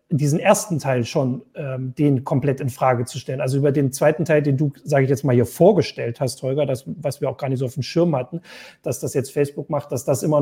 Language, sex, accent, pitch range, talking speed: German, male, German, 135-165 Hz, 255 wpm